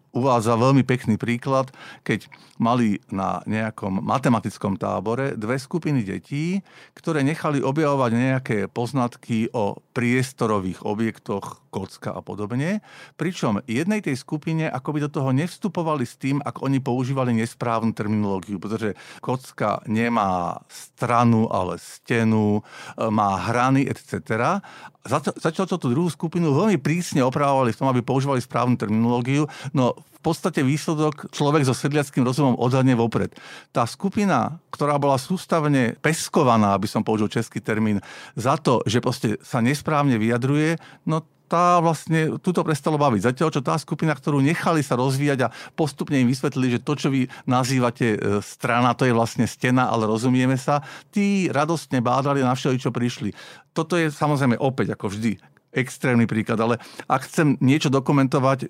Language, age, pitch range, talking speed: Slovak, 50-69, 115-150 Hz, 145 wpm